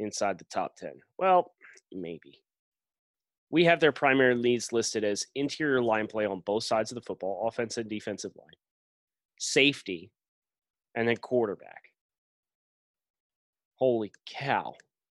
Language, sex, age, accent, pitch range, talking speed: English, male, 30-49, American, 110-135 Hz, 125 wpm